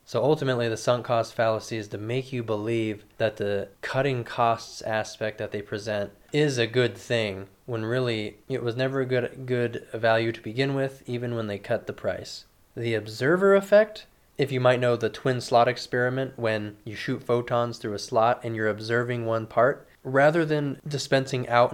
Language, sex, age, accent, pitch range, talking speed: English, male, 20-39, American, 110-130 Hz, 190 wpm